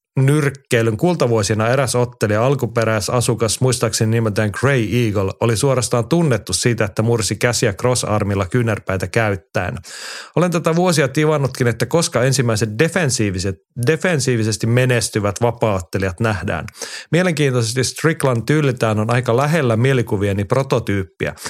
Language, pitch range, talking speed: Finnish, 110-135 Hz, 110 wpm